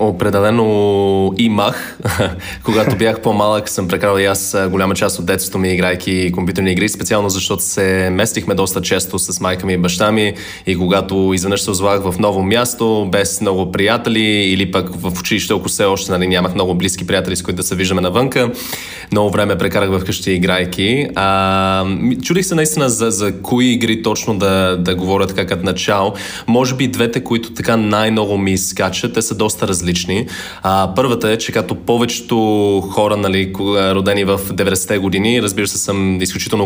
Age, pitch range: 20-39, 95-110 Hz